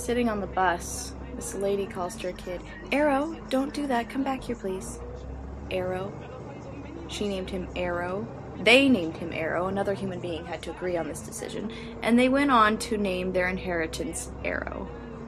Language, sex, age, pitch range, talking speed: English, female, 20-39, 175-230 Hz, 175 wpm